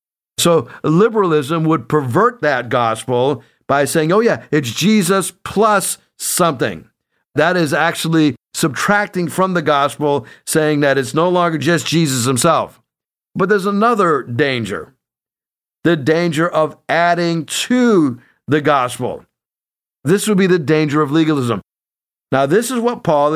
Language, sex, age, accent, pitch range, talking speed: English, male, 50-69, American, 130-165 Hz, 135 wpm